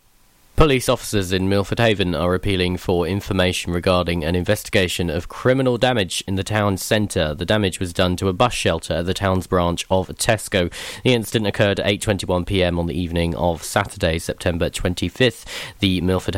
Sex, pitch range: male, 90-110 Hz